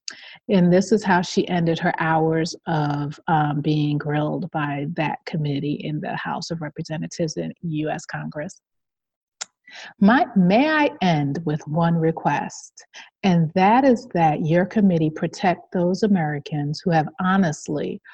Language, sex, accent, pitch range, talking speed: English, female, American, 155-195 Hz, 135 wpm